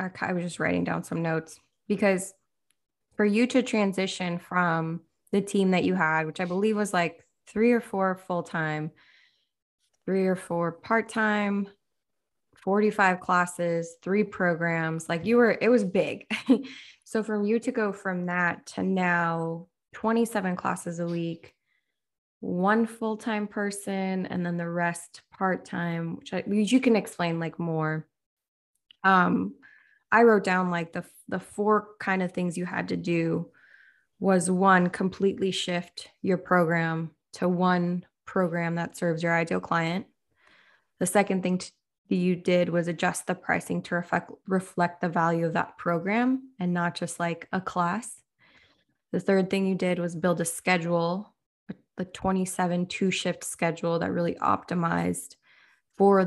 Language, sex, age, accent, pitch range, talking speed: English, female, 20-39, American, 170-200 Hz, 155 wpm